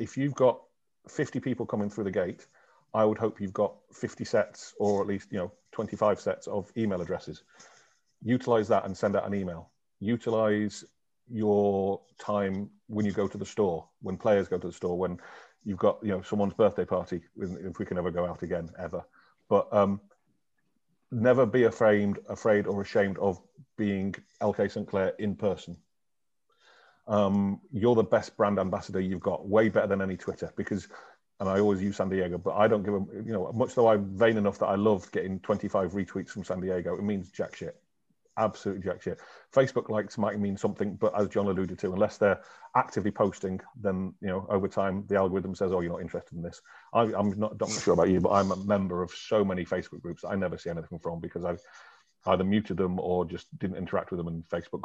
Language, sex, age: English, male, 40-59